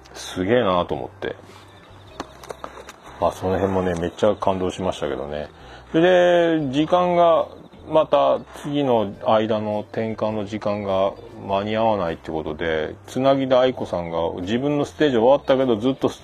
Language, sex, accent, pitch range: Japanese, male, native, 95-130 Hz